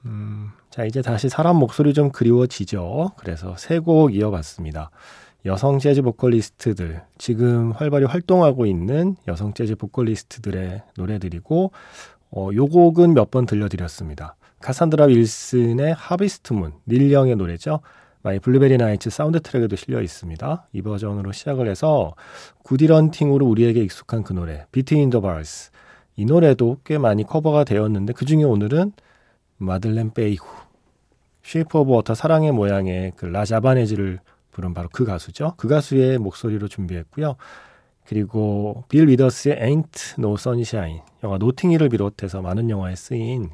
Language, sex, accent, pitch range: Korean, male, native, 95-140 Hz